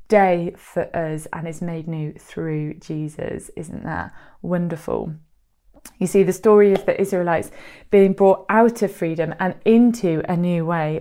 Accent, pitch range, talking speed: British, 165-195 Hz, 160 wpm